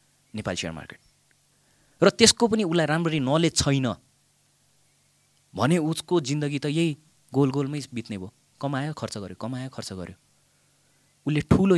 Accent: Indian